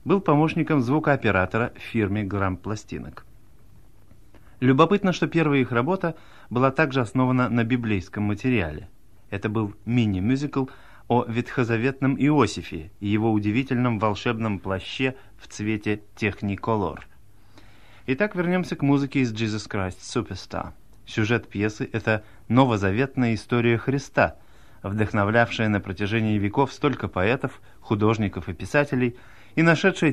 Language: Russian